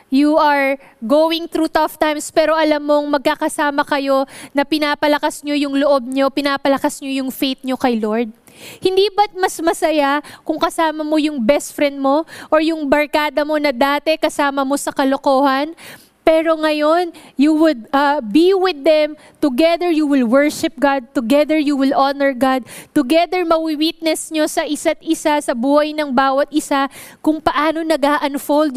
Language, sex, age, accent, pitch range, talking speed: English, female, 20-39, Filipino, 255-310 Hz, 165 wpm